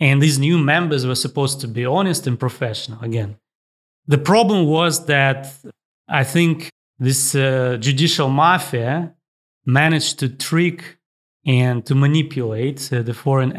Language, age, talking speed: English, 30-49, 135 wpm